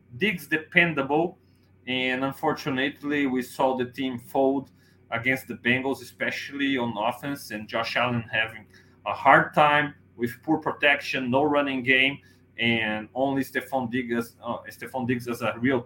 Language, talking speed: English, 145 wpm